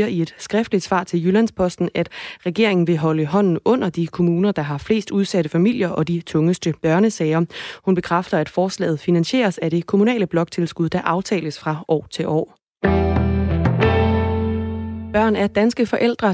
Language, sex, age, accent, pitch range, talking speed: Danish, female, 20-39, native, 160-195 Hz, 155 wpm